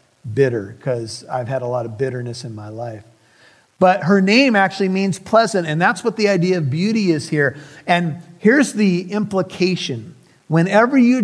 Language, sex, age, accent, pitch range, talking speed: English, male, 50-69, American, 135-180 Hz, 170 wpm